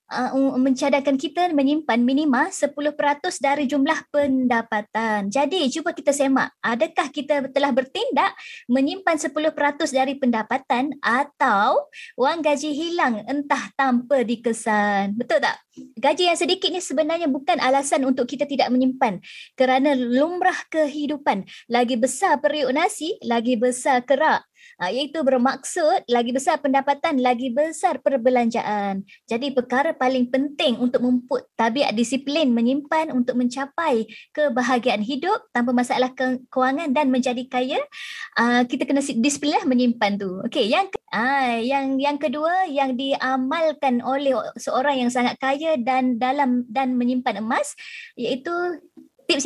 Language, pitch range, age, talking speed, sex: Malay, 255-300 Hz, 20-39, 130 wpm, male